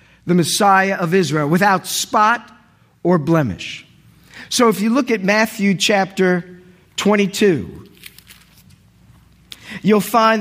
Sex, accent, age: male, American, 50-69